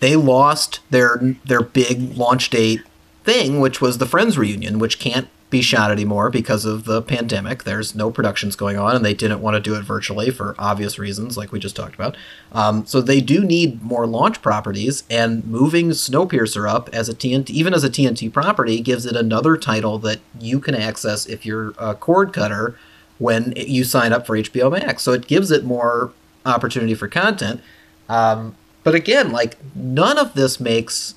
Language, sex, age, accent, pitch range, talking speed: English, male, 30-49, American, 110-130 Hz, 190 wpm